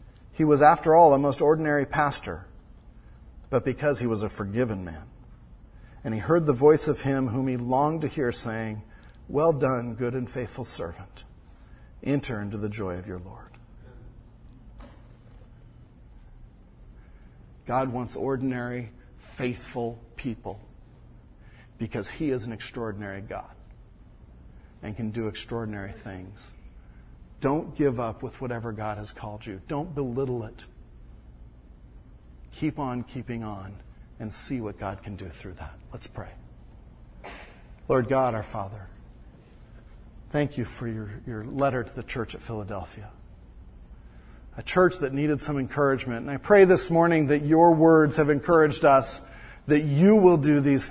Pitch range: 105-140 Hz